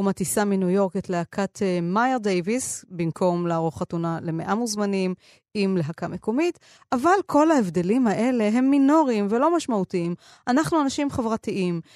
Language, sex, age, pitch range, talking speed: Hebrew, female, 30-49, 180-235 Hz, 135 wpm